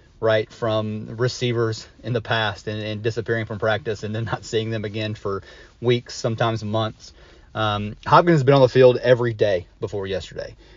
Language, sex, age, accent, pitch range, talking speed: English, male, 30-49, American, 105-125 Hz, 180 wpm